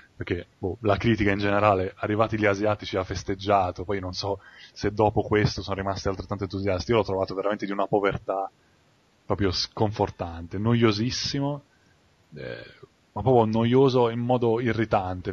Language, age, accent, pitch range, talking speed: English, 20-39, Italian, 100-115 Hz, 150 wpm